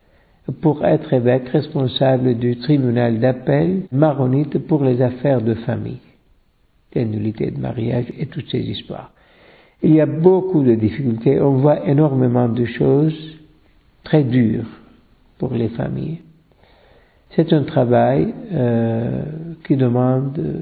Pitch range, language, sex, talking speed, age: 120-145 Hz, French, male, 125 wpm, 60-79